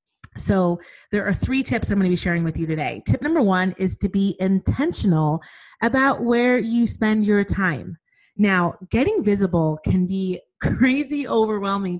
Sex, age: female, 30-49